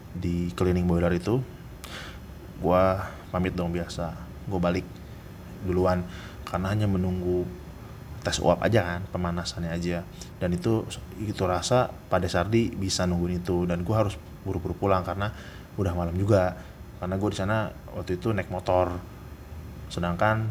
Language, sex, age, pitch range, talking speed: Indonesian, male, 20-39, 85-100 Hz, 130 wpm